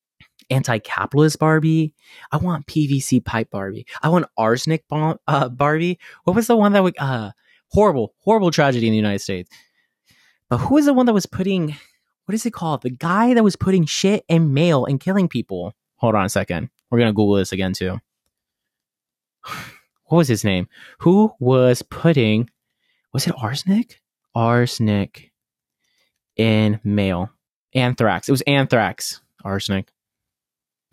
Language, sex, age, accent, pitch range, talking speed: English, male, 20-39, American, 110-160 Hz, 150 wpm